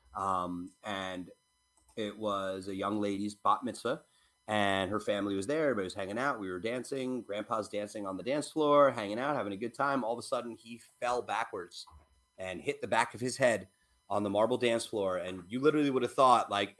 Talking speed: 210 wpm